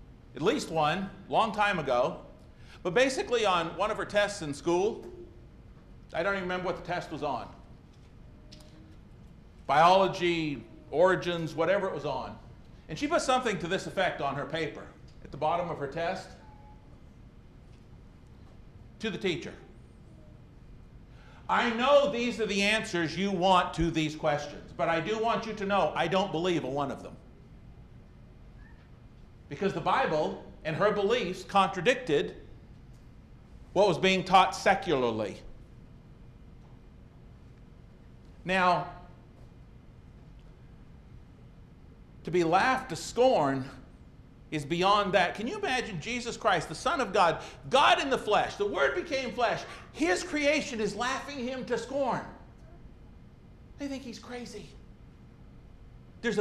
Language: English